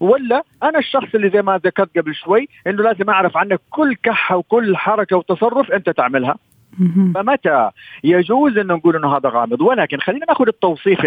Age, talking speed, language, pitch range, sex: 50-69, 170 wpm, Arabic, 140-200 Hz, male